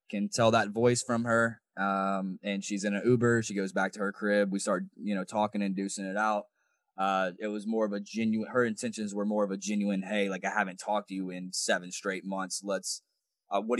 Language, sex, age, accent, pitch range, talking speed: English, male, 20-39, American, 105-130 Hz, 240 wpm